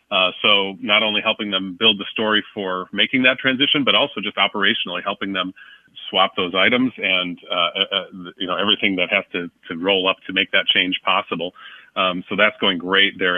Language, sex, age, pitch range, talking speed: English, male, 30-49, 95-110 Hz, 205 wpm